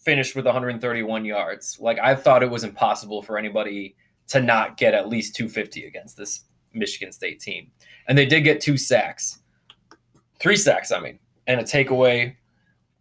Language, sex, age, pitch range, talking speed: English, male, 20-39, 105-130 Hz, 165 wpm